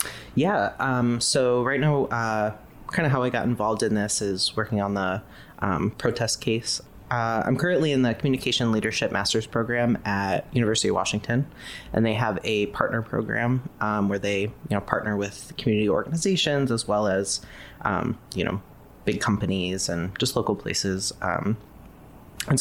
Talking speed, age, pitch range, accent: 165 wpm, 20-39, 100-120 Hz, American